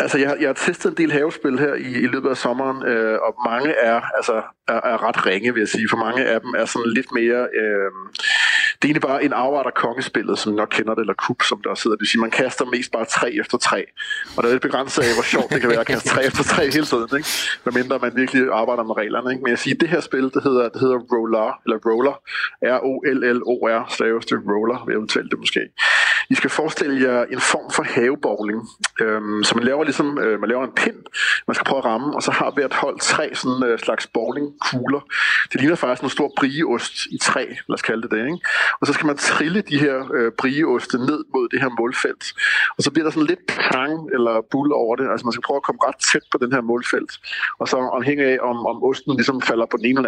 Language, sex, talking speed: Danish, male, 250 wpm